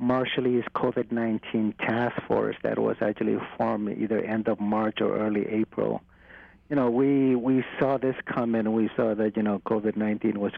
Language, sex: English, male